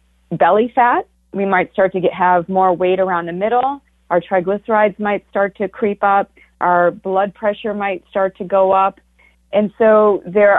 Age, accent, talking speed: 40-59, American, 170 wpm